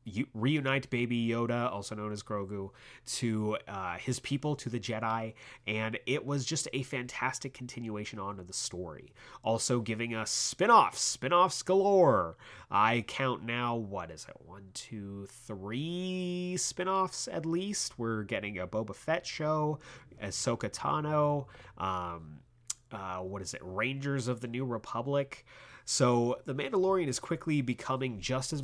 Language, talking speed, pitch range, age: English, 140 wpm, 105-135 Hz, 30-49